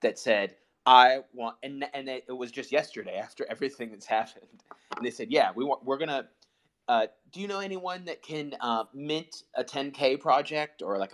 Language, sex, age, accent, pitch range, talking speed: English, male, 30-49, American, 110-150 Hz, 205 wpm